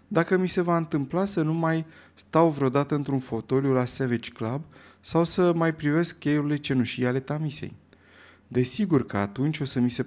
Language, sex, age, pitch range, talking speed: Romanian, male, 20-39, 120-170 Hz, 180 wpm